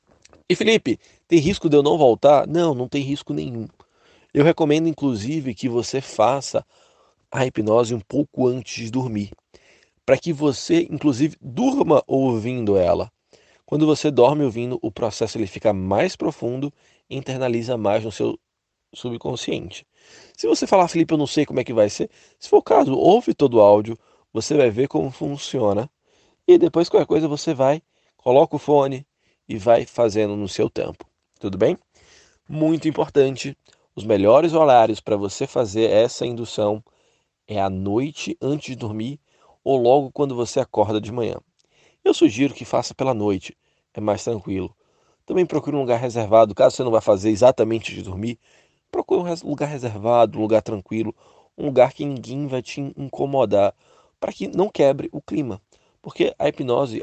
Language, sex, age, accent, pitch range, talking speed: Portuguese, male, 20-39, Brazilian, 115-150 Hz, 165 wpm